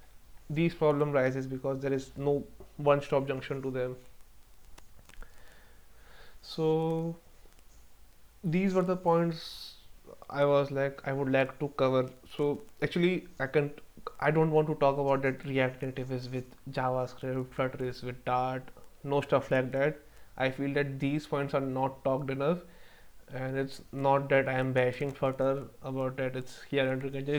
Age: 20-39